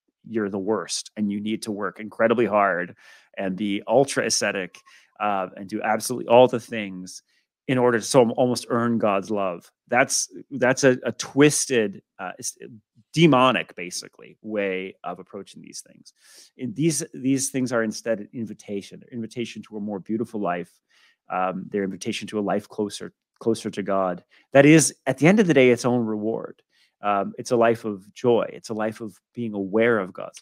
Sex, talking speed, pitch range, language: male, 180 wpm, 110-160 Hz, English